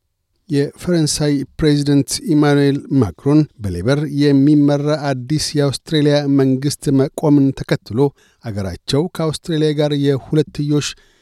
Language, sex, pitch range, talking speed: Amharic, male, 130-145 Hz, 80 wpm